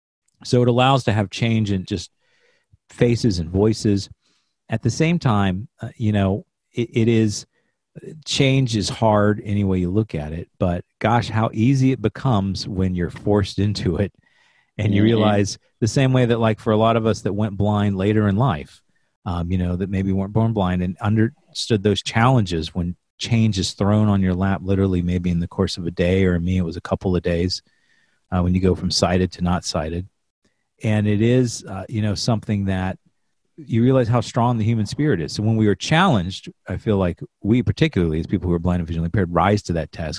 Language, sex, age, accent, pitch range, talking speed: English, male, 40-59, American, 90-115 Hz, 210 wpm